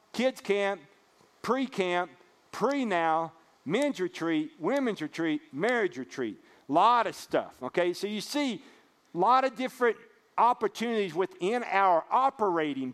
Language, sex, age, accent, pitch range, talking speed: English, male, 50-69, American, 145-215 Hz, 125 wpm